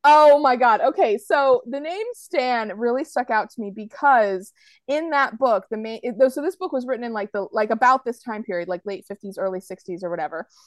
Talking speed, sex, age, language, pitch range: 220 wpm, female, 20-39, English, 205-270 Hz